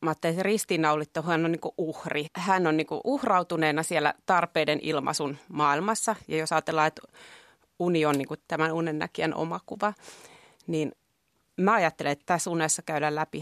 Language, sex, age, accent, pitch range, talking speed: Finnish, female, 30-49, native, 155-180 Hz, 150 wpm